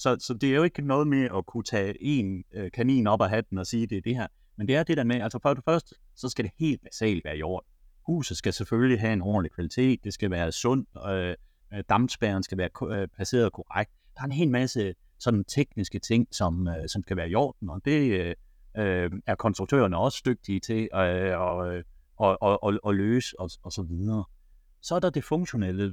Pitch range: 95-125 Hz